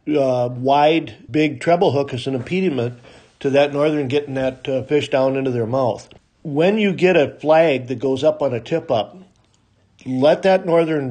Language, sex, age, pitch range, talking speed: English, male, 50-69, 130-155 Hz, 185 wpm